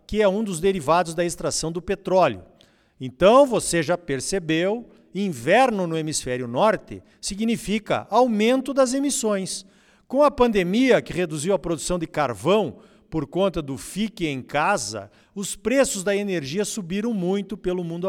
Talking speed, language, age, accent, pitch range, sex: 145 wpm, Portuguese, 50-69, Brazilian, 160-205 Hz, male